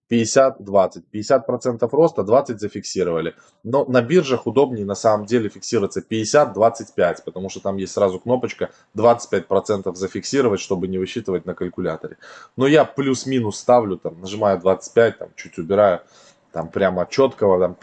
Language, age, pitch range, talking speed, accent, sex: Russian, 20-39, 100-125 Hz, 135 wpm, native, male